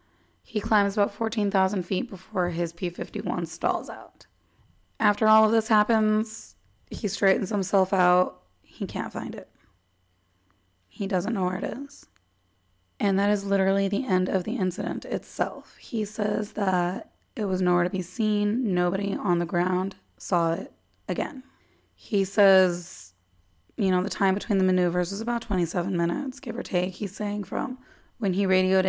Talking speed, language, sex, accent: 160 wpm, English, female, American